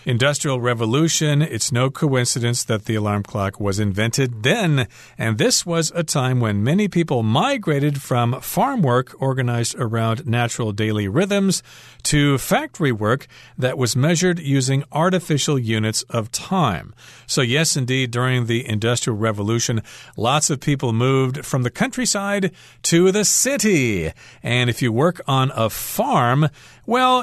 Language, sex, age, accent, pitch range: Chinese, male, 40-59, American, 110-145 Hz